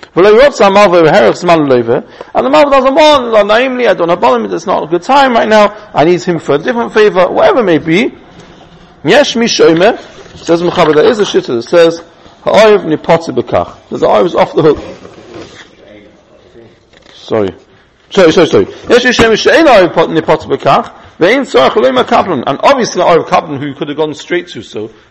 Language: English